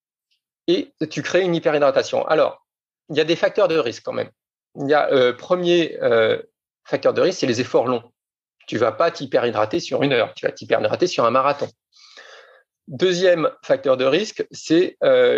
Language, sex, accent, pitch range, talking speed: French, male, French, 135-195 Hz, 185 wpm